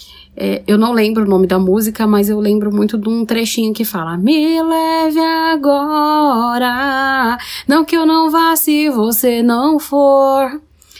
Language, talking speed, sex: Portuguese, 155 wpm, female